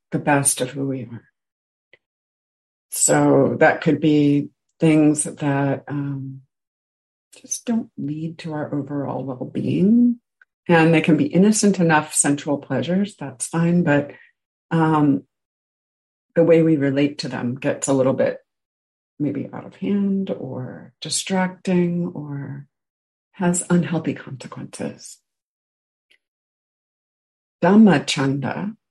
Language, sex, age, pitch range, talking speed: English, female, 50-69, 135-175 Hz, 110 wpm